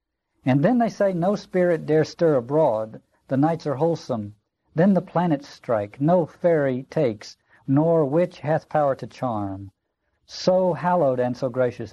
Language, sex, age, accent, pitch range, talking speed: English, male, 60-79, American, 110-155 Hz, 155 wpm